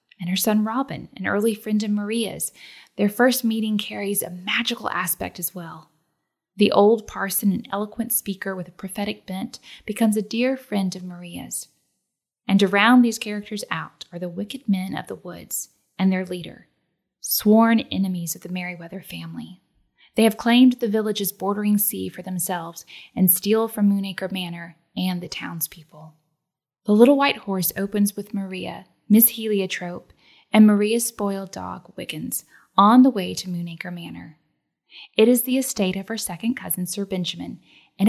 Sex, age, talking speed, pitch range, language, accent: female, 10-29, 165 wpm, 180-225 Hz, English, American